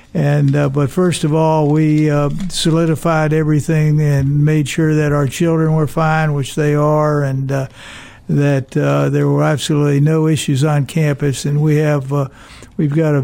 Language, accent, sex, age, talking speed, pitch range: English, American, male, 60-79, 175 wpm, 145-155 Hz